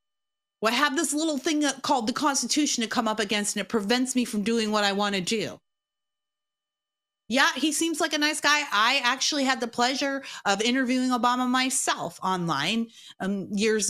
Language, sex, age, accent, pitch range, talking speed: English, female, 30-49, American, 200-275 Hz, 185 wpm